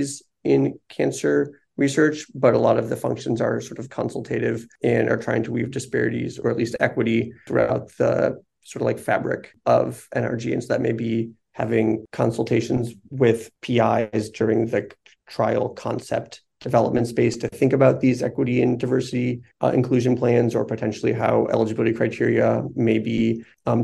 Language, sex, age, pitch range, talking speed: English, male, 30-49, 110-125 Hz, 160 wpm